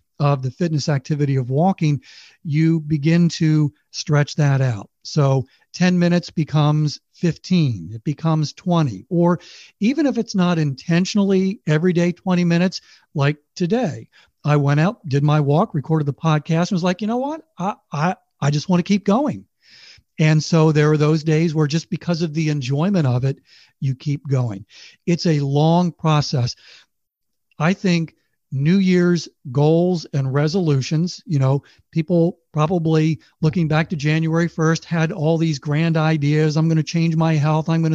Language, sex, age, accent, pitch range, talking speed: English, male, 50-69, American, 150-175 Hz, 165 wpm